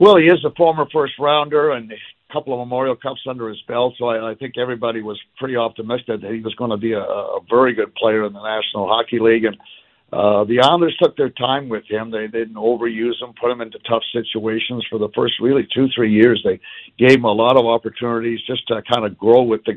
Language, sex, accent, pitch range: English, male, American, 110-130 Hz